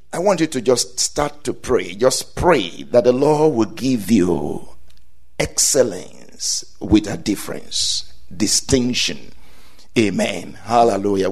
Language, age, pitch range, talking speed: English, 50-69, 125-195 Hz, 120 wpm